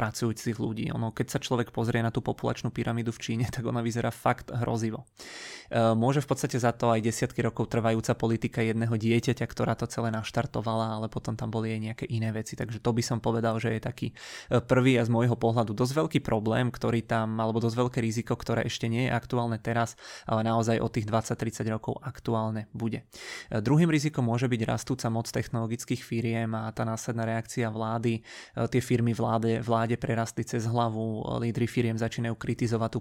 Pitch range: 115-120 Hz